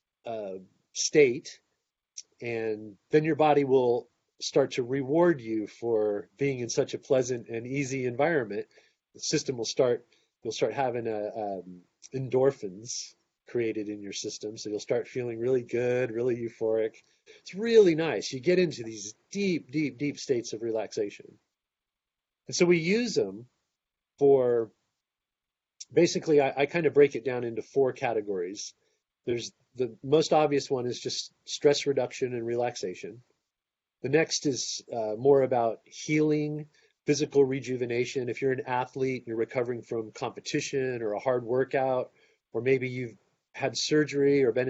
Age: 40-59